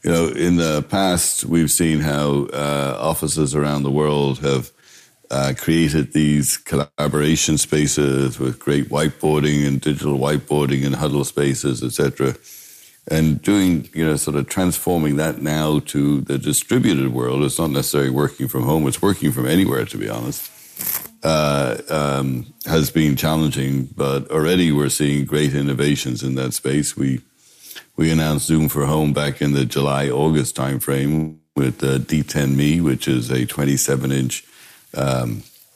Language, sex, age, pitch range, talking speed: German, male, 60-79, 70-75 Hz, 155 wpm